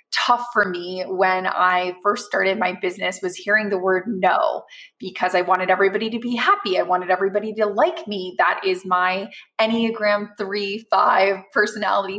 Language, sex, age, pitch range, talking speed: English, female, 20-39, 190-240 Hz, 165 wpm